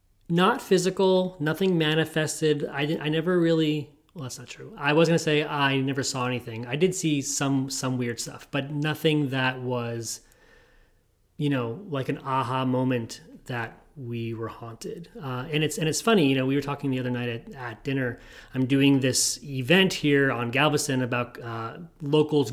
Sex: male